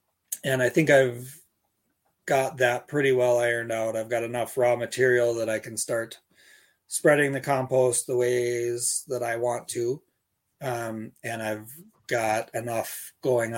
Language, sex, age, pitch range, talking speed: English, male, 30-49, 110-120 Hz, 150 wpm